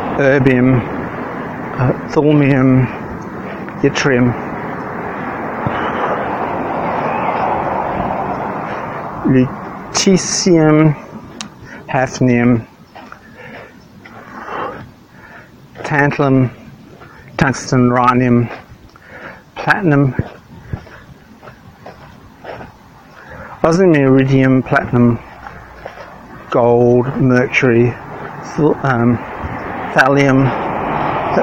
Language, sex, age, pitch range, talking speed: English, male, 60-79, 120-140 Hz, 35 wpm